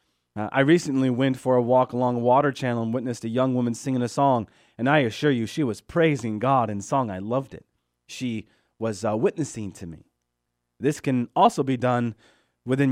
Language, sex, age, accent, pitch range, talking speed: English, male, 30-49, American, 105-140 Hz, 205 wpm